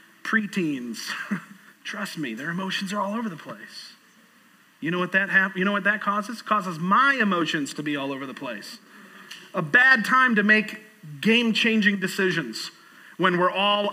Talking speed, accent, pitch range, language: 170 wpm, American, 165-215 Hz, English